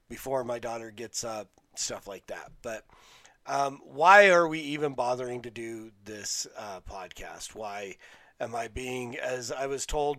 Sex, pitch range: male, 115-150 Hz